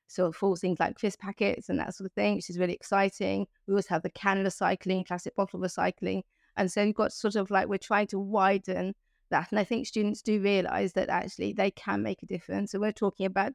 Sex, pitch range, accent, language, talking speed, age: female, 185-200 Hz, British, English, 240 wpm, 30-49